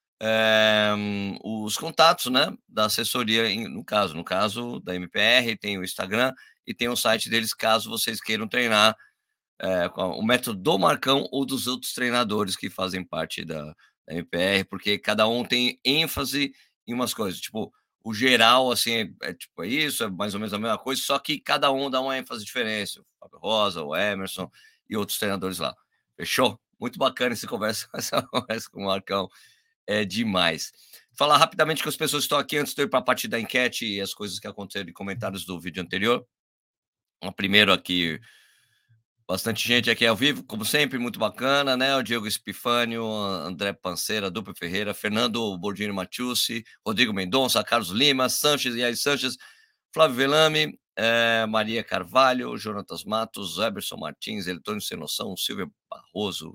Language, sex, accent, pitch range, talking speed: Portuguese, male, Brazilian, 100-130 Hz, 175 wpm